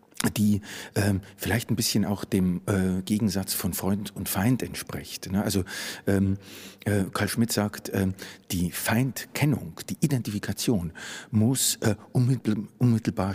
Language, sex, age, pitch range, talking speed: German, male, 50-69, 95-110 Hz, 130 wpm